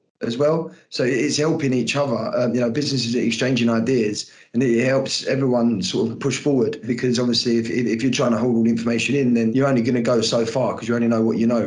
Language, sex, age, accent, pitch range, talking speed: English, male, 20-39, British, 115-135 Hz, 250 wpm